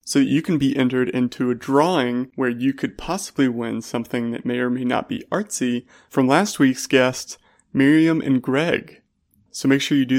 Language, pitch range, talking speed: English, 125-145 Hz, 195 wpm